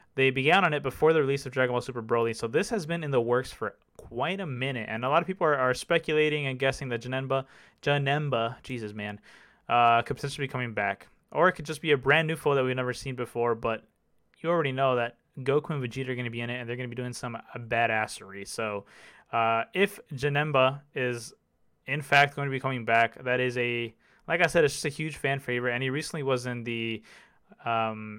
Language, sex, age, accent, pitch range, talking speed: English, male, 20-39, American, 120-140 Hz, 240 wpm